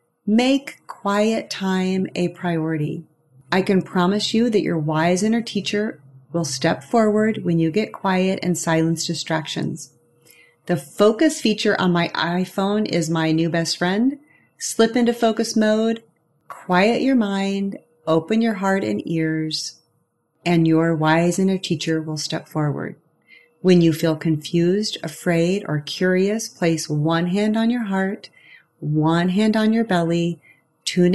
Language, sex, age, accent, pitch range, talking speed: English, female, 30-49, American, 165-210 Hz, 145 wpm